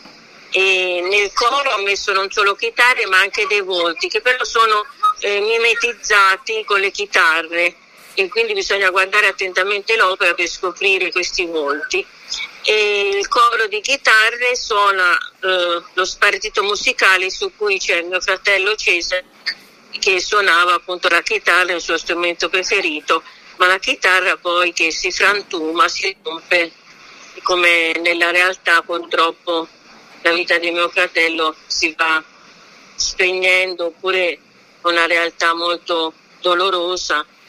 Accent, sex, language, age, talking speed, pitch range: native, female, Italian, 50-69, 130 wpm, 170-260 Hz